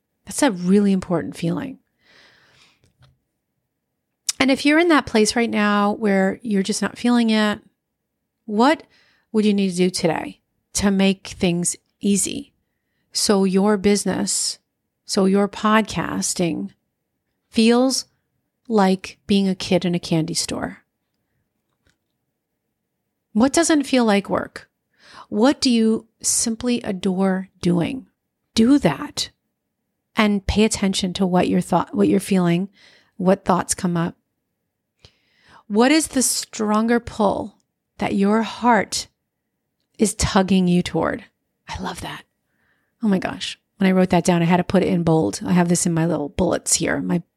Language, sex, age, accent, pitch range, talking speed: English, female, 40-59, American, 185-235 Hz, 140 wpm